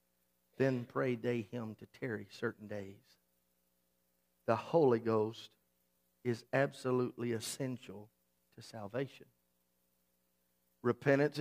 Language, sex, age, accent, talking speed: English, male, 50-69, American, 90 wpm